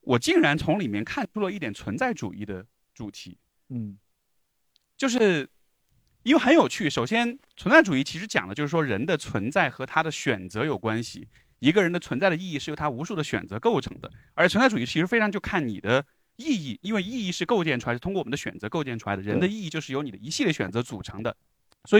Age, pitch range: 30-49, 115-195 Hz